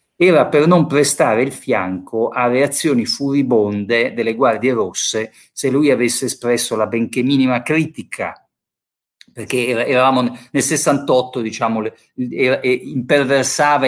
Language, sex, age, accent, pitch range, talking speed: Italian, male, 50-69, native, 120-160 Hz, 110 wpm